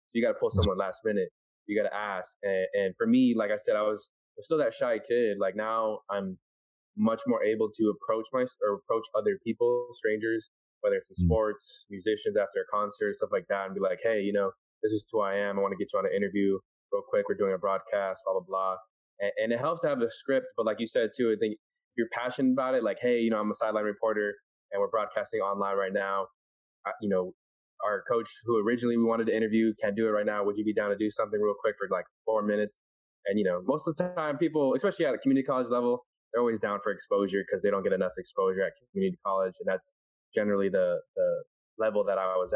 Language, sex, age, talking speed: English, male, 20-39, 250 wpm